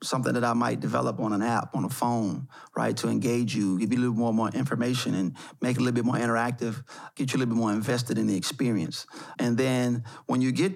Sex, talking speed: male, 250 wpm